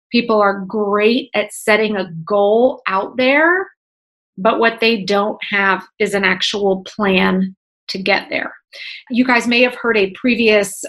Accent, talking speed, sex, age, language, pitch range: American, 155 wpm, female, 30-49, English, 195-230 Hz